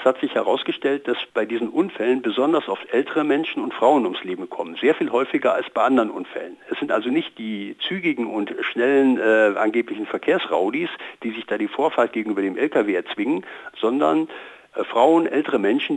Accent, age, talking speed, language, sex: German, 60-79, 175 wpm, German, male